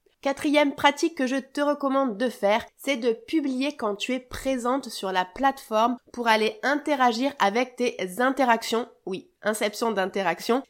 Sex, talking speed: female, 150 wpm